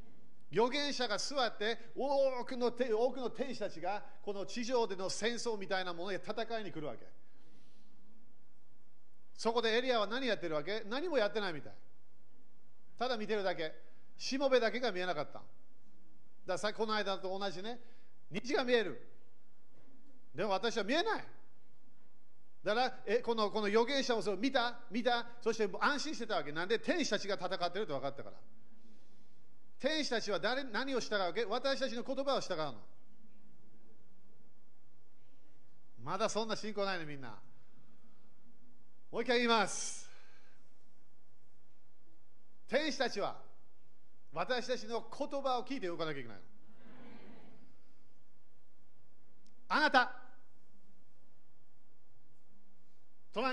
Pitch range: 180-245 Hz